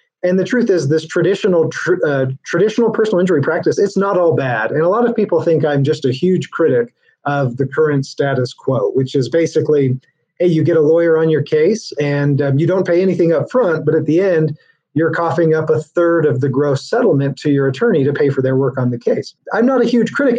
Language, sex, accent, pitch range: English, male, American, 140-180 Hz